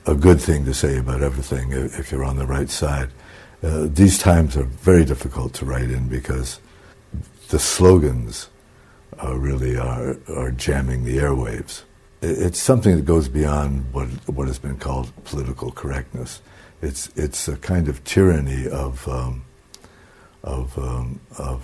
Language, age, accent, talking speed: English, 60-79, American, 155 wpm